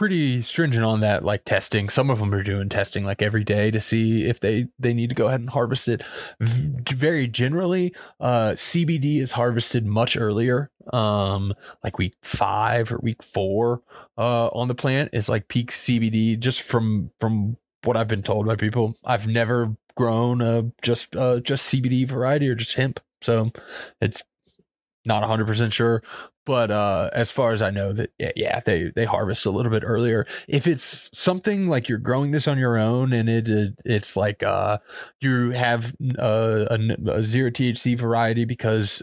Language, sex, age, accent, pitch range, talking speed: English, male, 20-39, American, 110-130 Hz, 185 wpm